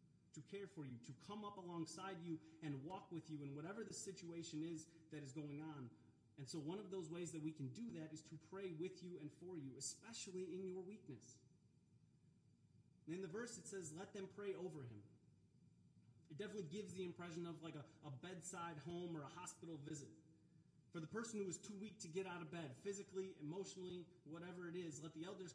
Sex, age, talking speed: male, 30-49, 215 wpm